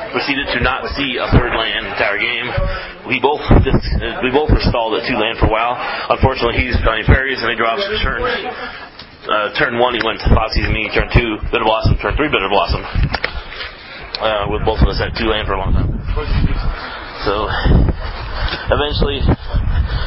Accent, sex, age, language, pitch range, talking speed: American, male, 30-49, English, 85-115 Hz, 180 wpm